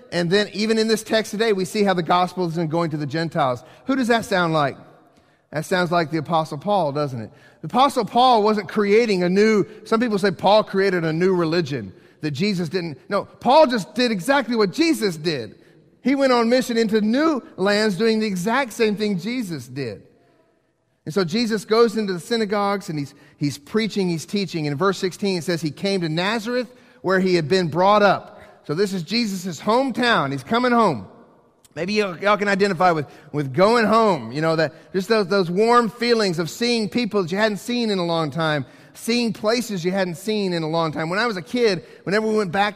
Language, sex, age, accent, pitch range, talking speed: English, male, 40-59, American, 170-225 Hz, 215 wpm